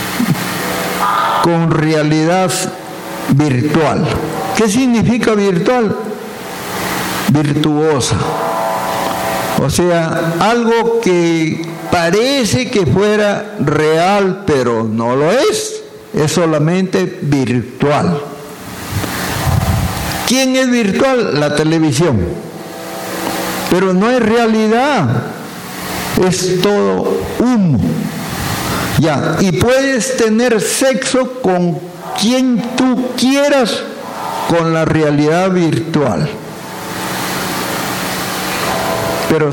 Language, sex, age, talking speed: Spanish, male, 60-79, 75 wpm